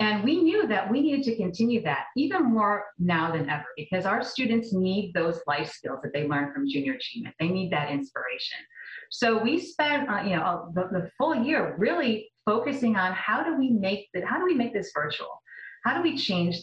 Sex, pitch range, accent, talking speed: female, 175-270 Hz, American, 215 wpm